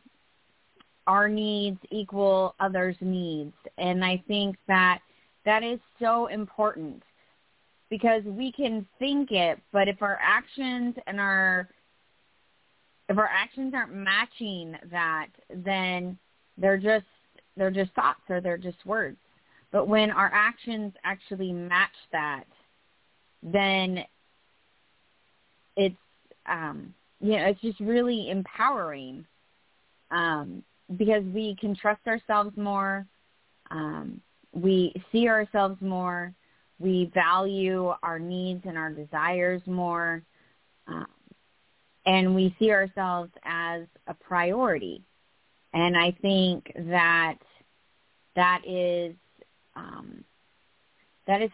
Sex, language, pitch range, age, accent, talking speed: female, English, 180-210 Hz, 30-49, American, 110 wpm